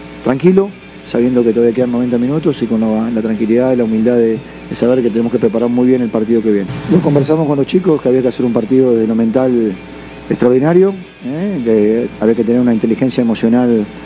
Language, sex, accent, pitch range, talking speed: Spanish, male, Argentinian, 115-135 Hz, 215 wpm